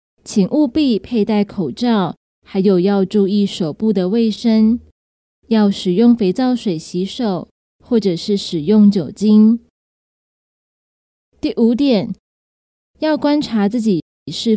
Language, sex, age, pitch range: Chinese, female, 20-39, 180-230 Hz